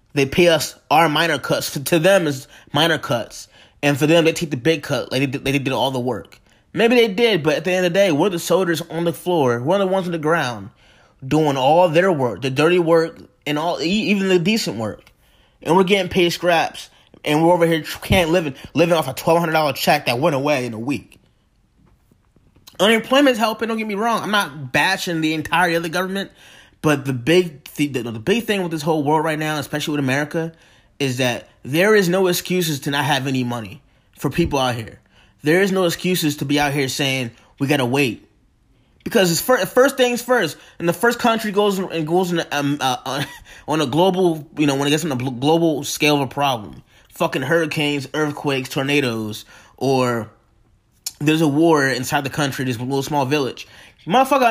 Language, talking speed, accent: English, 210 wpm, American